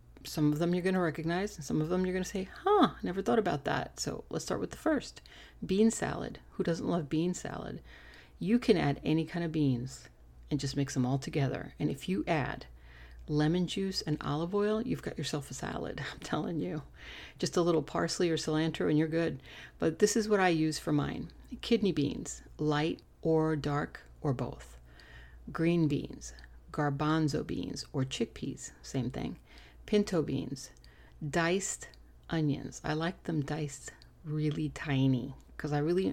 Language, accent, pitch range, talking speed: English, American, 140-180 Hz, 180 wpm